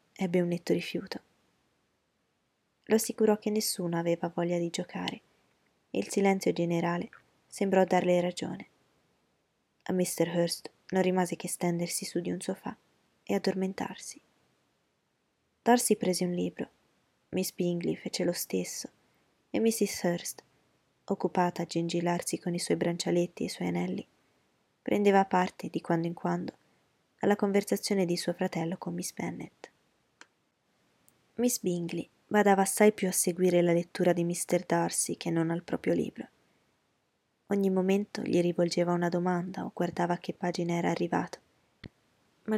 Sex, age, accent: female, 20-39, native